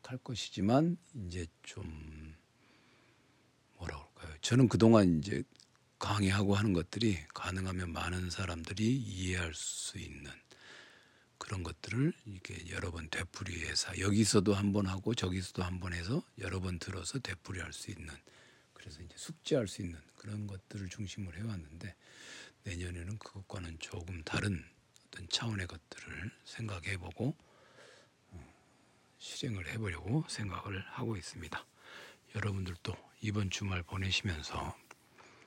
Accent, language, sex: native, Korean, male